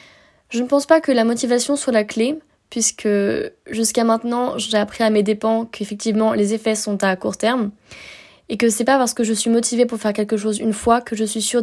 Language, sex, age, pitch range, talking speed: French, female, 20-39, 210-255 Hz, 225 wpm